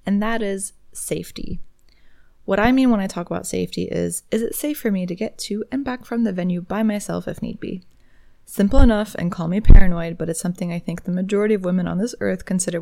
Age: 20-39